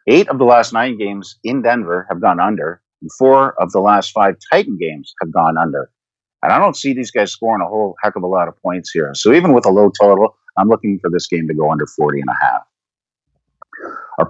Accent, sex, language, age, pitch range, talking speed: American, male, English, 50-69, 95-130 Hz, 240 wpm